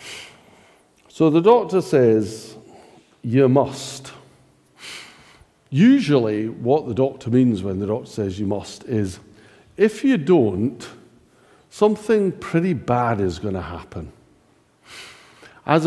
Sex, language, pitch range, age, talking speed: male, English, 110-170 Hz, 50-69, 110 wpm